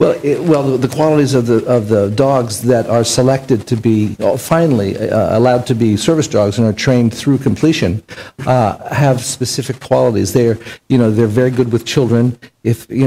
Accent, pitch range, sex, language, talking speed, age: American, 105-125 Hz, male, English, 190 wpm, 60-79